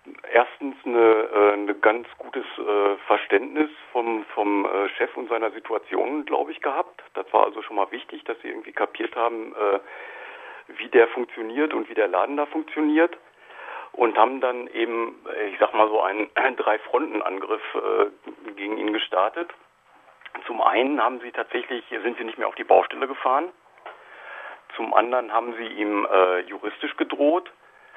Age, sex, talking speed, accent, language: 50-69, male, 160 wpm, German, German